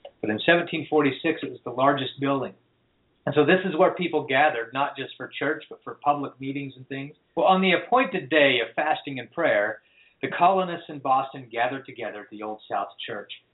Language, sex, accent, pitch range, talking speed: English, male, American, 135-185 Hz, 200 wpm